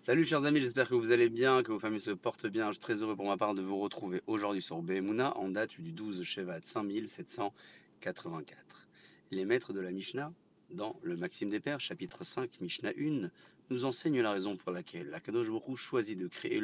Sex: male